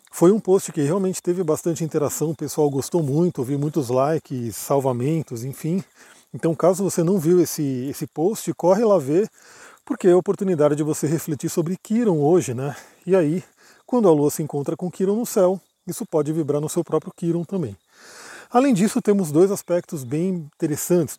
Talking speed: 185 wpm